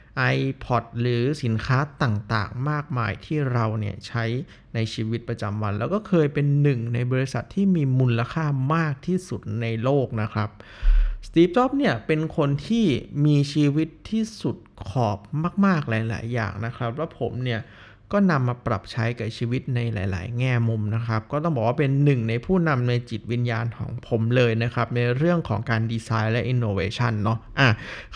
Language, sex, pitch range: Thai, male, 115-150 Hz